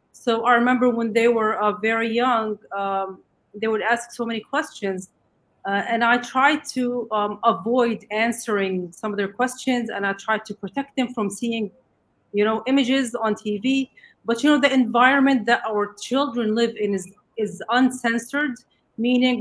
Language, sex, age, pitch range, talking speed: English, female, 30-49, 205-245 Hz, 170 wpm